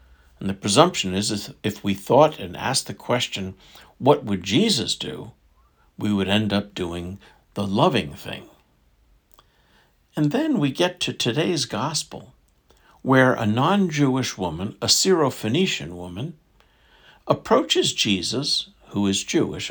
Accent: American